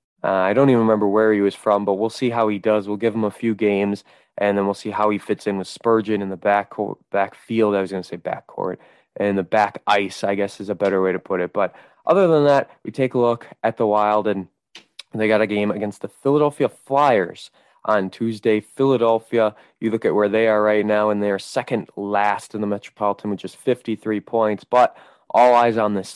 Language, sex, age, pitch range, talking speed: English, male, 20-39, 100-120 Hz, 230 wpm